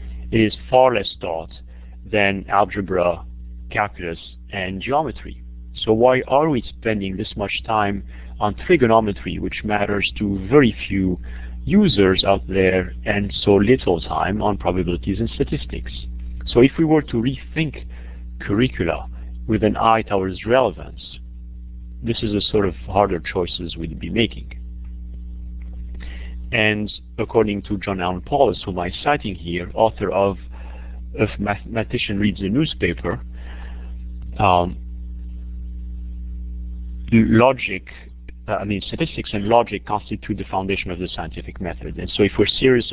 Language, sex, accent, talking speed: English, male, French, 130 wpm